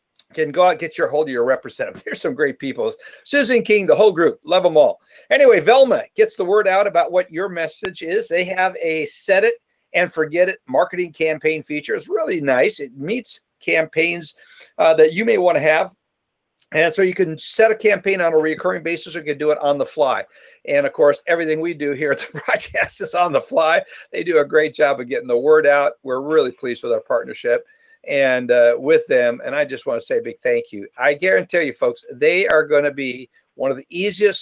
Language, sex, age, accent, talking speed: English, male, 50-69, American, 230 wpm